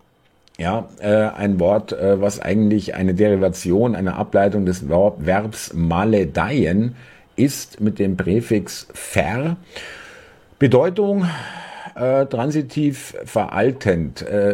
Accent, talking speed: German, 100 wpm